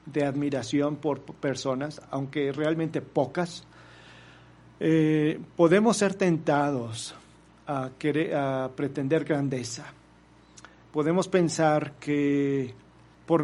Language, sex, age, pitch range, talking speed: Spanish, male, 40-59, 140-170 Hz, 90 wpm